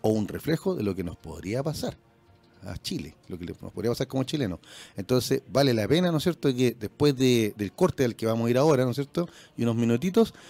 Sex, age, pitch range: male, 40-59, 120-165 Hz